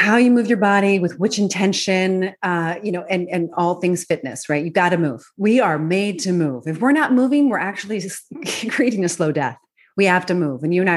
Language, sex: English, female